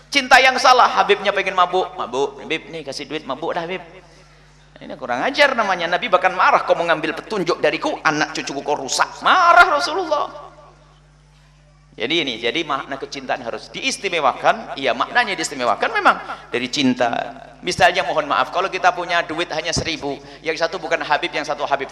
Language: Indonesian